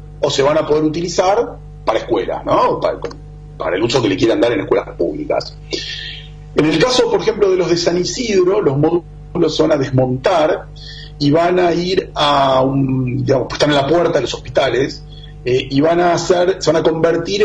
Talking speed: 195 wpm